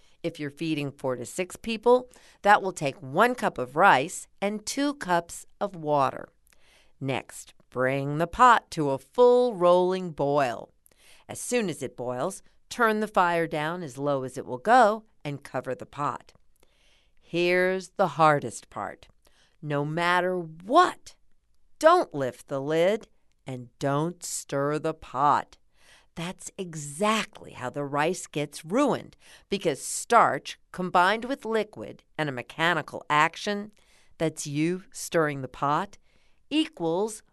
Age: 50-69